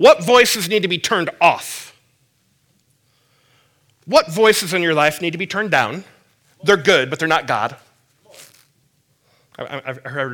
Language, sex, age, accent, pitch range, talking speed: English, male, 30-49, American, 125-165 Hz, 150 wpm